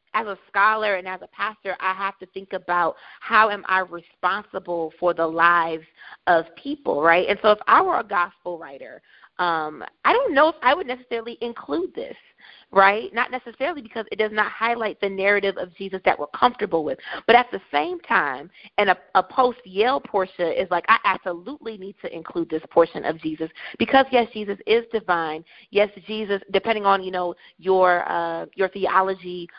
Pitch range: 175-225 Hz